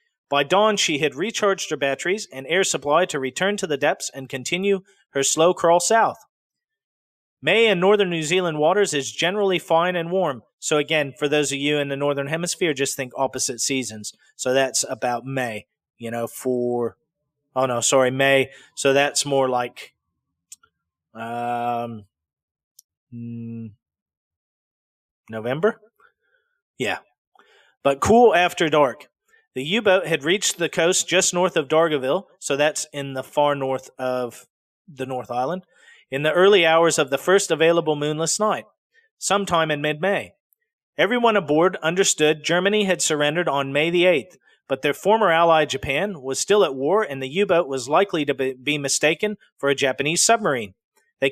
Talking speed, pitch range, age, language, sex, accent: 155 wpm, 135-190 Hz, 30-49, English, male, American